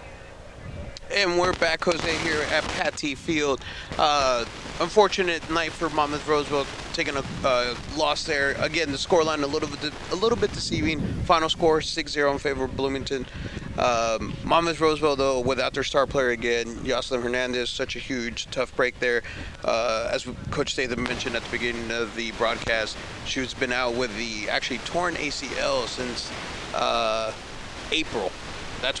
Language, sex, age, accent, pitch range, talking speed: English, male, 30-49, American, 120-155 Hz, 155 wpm